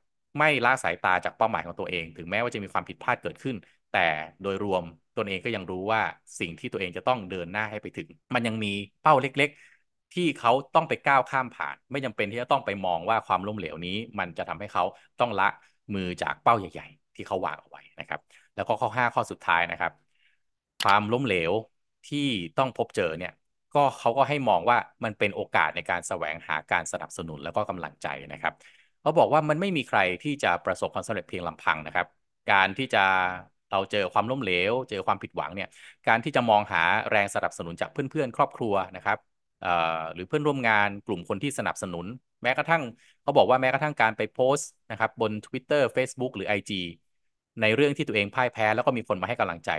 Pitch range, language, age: 95-130 Hz, Thai, 20-39